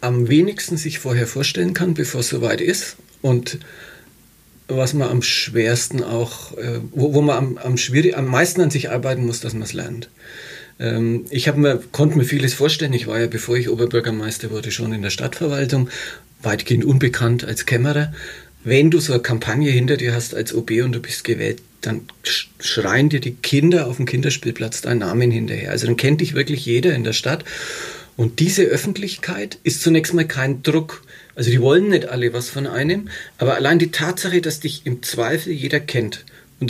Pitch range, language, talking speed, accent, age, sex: 120-155 Hz, German, 180 wpm, German, 40-59, male